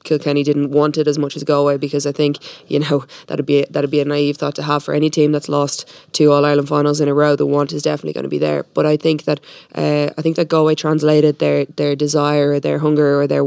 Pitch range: 145-150 Hz